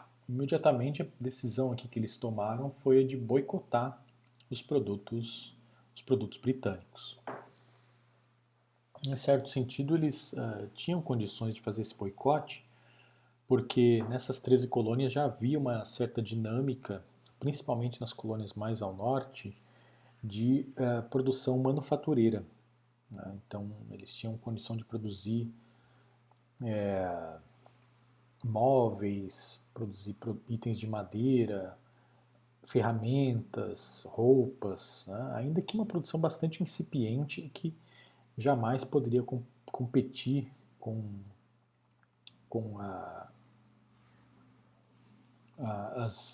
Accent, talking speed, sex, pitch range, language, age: Brazilian, 90 wpm, male, 115-135 Hz, Portuguese, 40-59